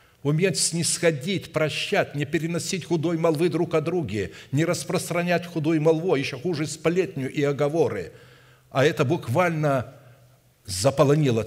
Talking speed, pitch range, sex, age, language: 120 wpm, 120-160 Hz, male, 60-79, Russian